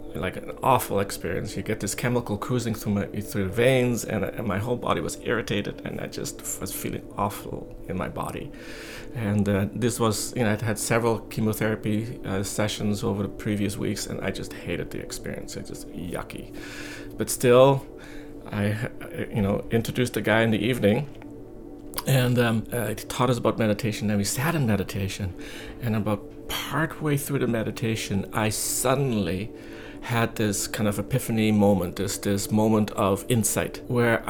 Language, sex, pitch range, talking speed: English, male, 105-125 Hz, 180 wpm